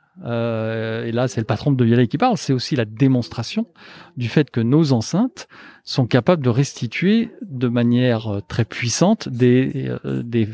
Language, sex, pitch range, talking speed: French, male, 115-140 Hz, 170 wpm